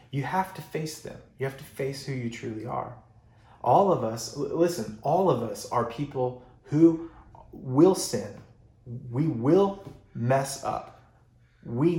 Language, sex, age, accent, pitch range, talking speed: English, male, 30-49, American, 115-140 Hz, 150 wpm